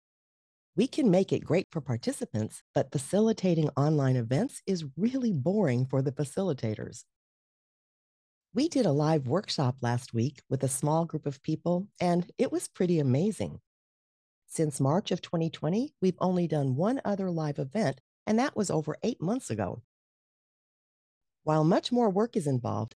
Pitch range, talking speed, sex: 130-190 Hz, 155 wpm, female